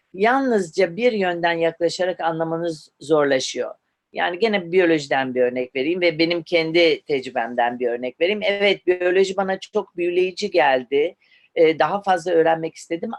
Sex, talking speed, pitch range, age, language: female, 135 wpm, 150-200 Hz, 40-59, Turkish